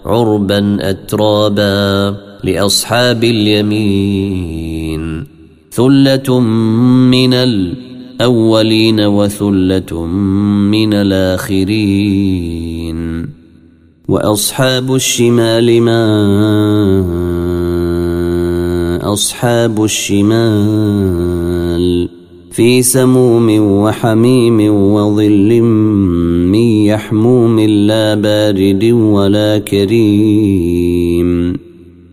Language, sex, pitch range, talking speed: Arabic, male, 90-115 Hz, 45 wpm